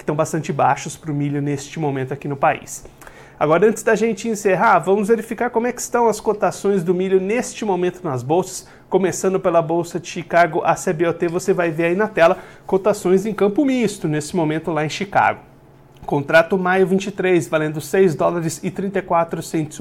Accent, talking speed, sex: Brazilian, 180 wpm, male